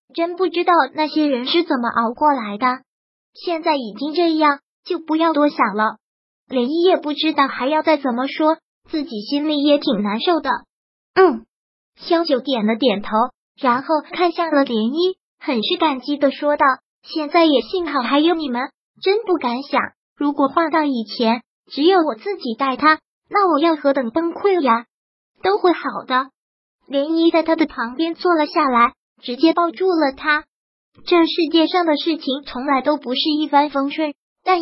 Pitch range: 255-330 Hz